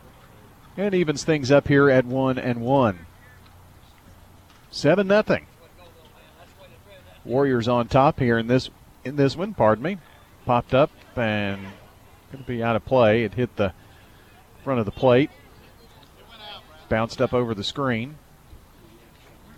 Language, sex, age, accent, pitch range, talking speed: English, male, 40-59, American, 110-145 Hz, 130 wpm